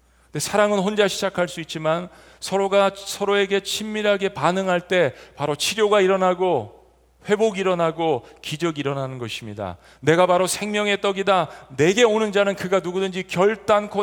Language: Korean